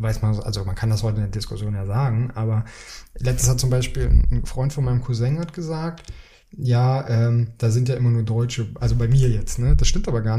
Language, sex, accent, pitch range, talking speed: German, male, German, 115-135 Hz, 235 wpm